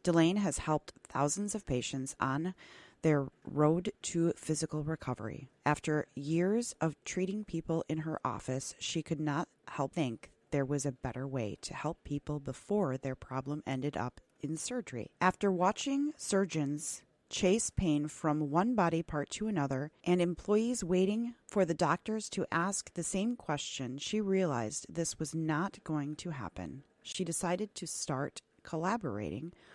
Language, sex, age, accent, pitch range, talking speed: English, female, 30-49, American, 145-185 Hz, 150 wpm